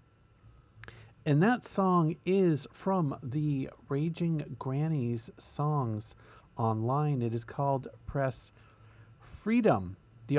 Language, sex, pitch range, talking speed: English, male, 115-155 Hz, 90 wpm